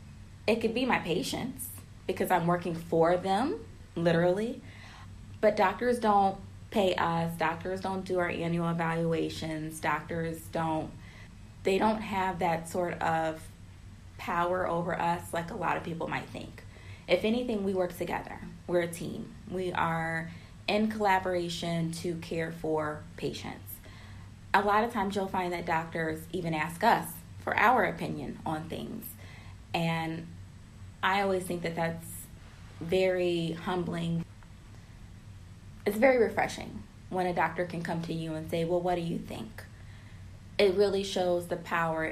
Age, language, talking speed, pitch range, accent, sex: 20-39, English, 145 wpm, 110-185 Hz, American, female